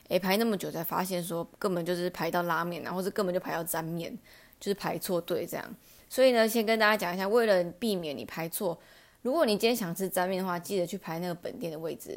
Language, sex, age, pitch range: Chinese, female, 20-39, 170-210 Hz